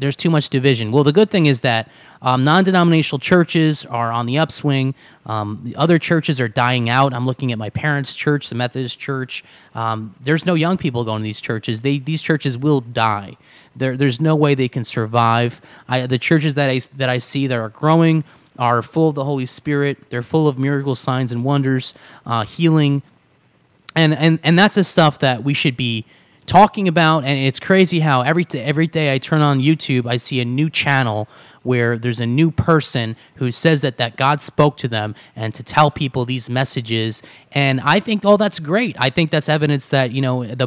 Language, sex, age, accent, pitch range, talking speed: English, male, 20-39, American, 125-150 Hz, 210 wpm